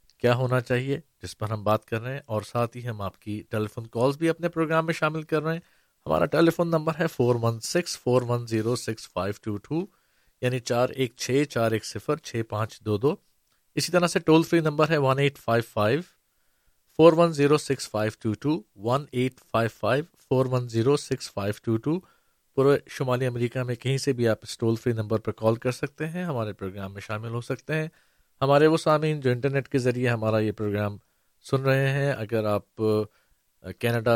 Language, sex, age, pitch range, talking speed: Urdu, male, 50-69, 110-145 Hz, 165 wpm